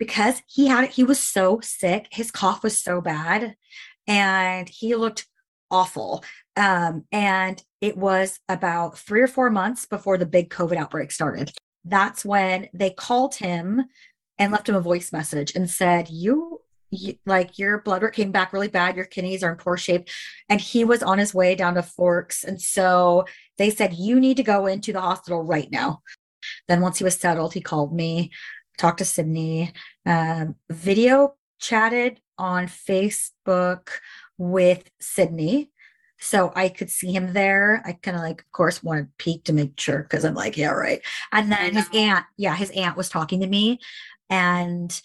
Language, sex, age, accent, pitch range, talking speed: English, female, 30-49, American, 175-210 Hz, 180 wpm